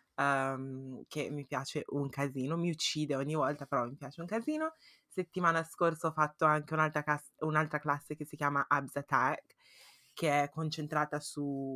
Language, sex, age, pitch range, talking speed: Italian, female, 20-39, 140-165 Hz, 165 wpm